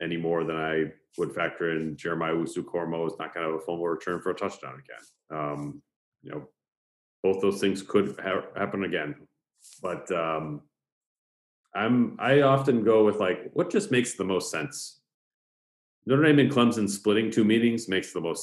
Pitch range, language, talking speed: 80-110 Hz, English, 190 wpm